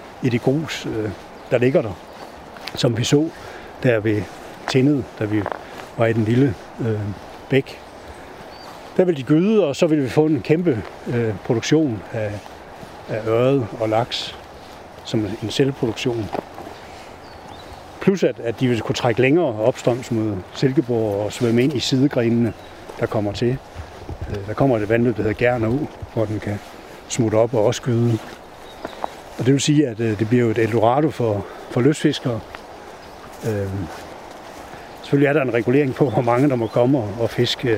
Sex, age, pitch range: male, 60-79, 110-135 Hz